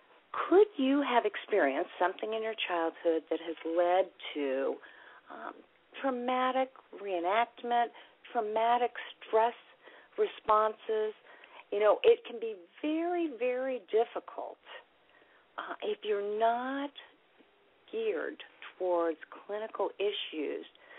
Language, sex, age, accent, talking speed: English, female, 50-69, American, 95 wpm